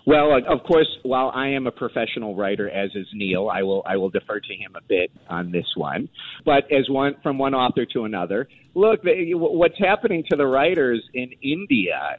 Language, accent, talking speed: English, American, 200 wpm